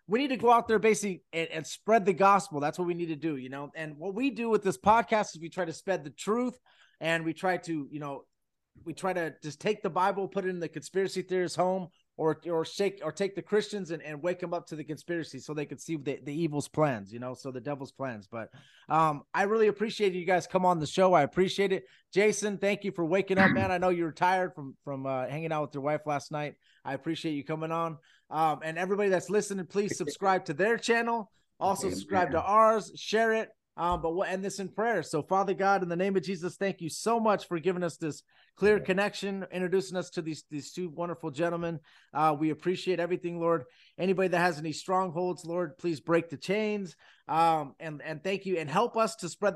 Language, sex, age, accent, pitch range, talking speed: English, male, 30-49, American, 155-190 Hz, 240 wpm